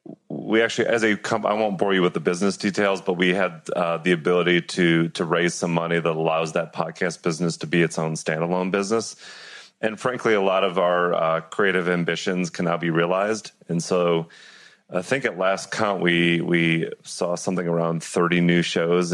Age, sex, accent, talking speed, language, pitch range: 30-49, male, American, 195 wpm, English, 85-95 Hz